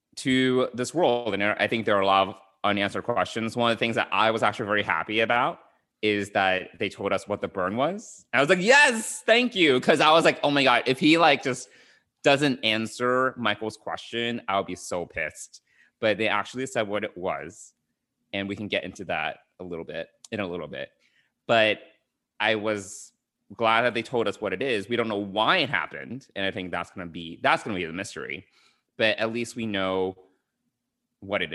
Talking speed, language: 215 wpm, English